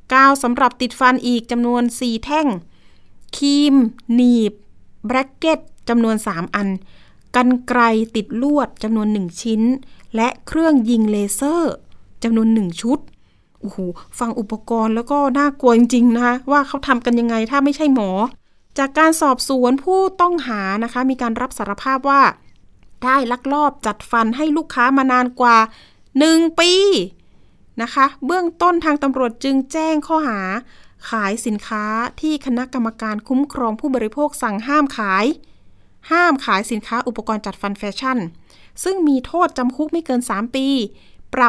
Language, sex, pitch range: Thai, female, 225-275 Hz